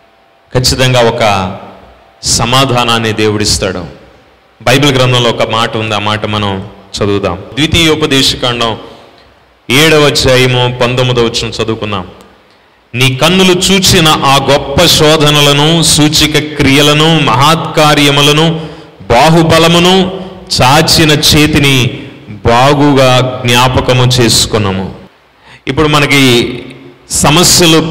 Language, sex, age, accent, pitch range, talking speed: Telugu, male, 30-49, native, 125-155 Hz, 50 wpm